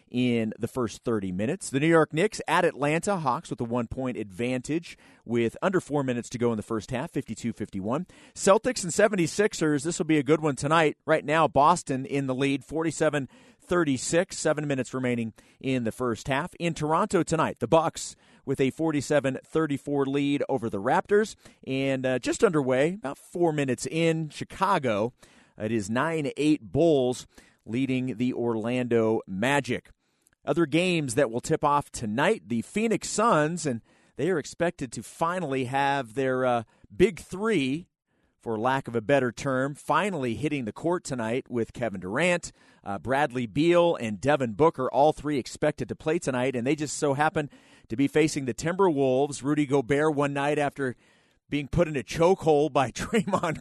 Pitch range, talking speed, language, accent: 125-160 Hz, 165 wpm, English, American